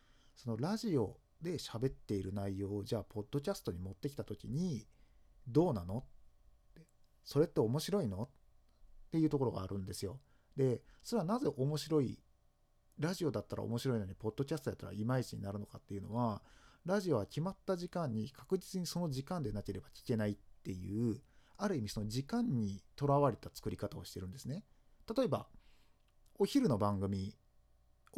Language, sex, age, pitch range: Japanese, male, 40-59, 105-150 Hz